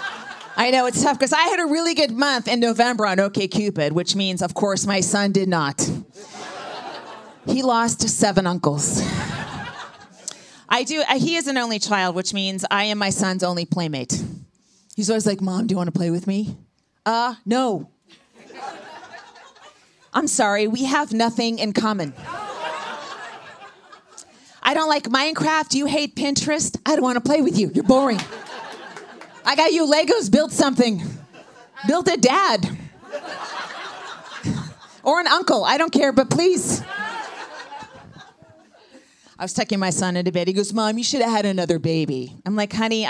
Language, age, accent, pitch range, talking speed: English, 30-49, American, 190-280 Hz, 155 wpm